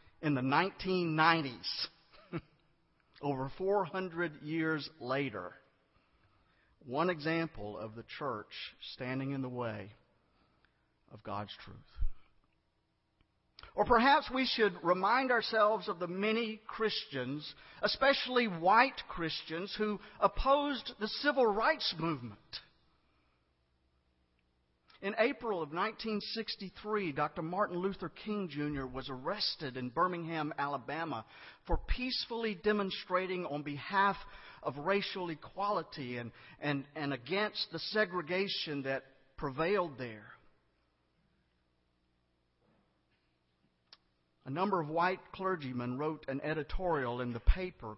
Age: 50-69